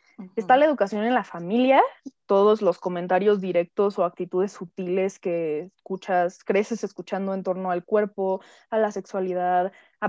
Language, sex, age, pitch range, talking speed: Spanish, female, 20-39, 180-220 Hz, 150 wpm